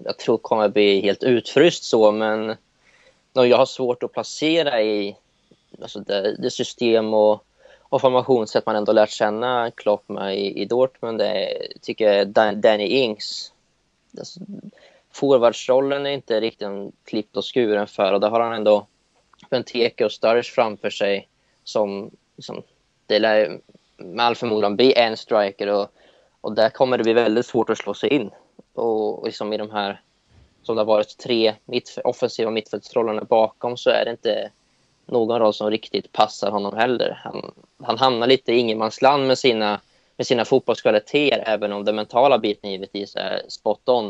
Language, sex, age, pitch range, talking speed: Swedish, male, 20-39, 105-125 Hz, 160 wpm